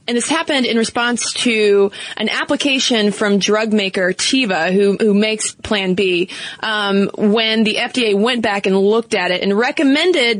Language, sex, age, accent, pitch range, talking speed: English, female, 20-39, American, 200-250 Hz, 165 wpm